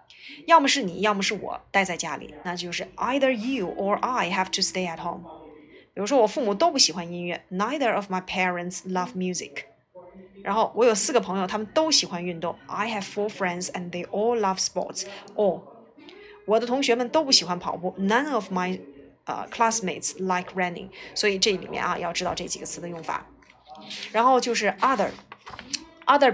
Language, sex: Chinese, female